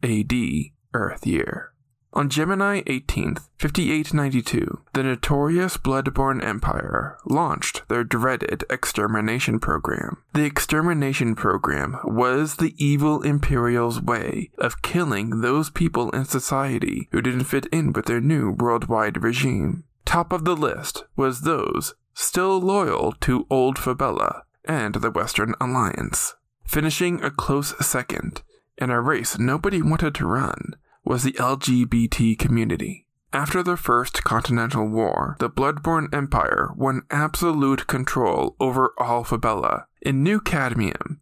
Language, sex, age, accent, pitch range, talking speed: English, male, 20-39, American, 120-155 Hz, 125 wpm